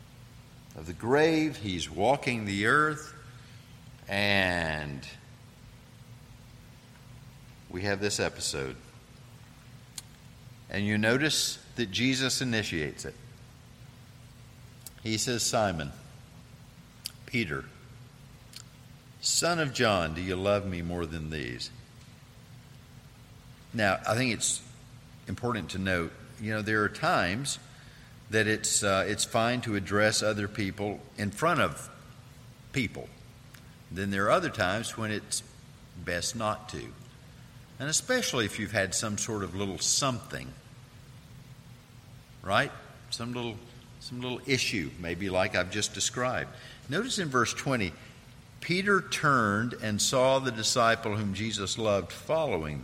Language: English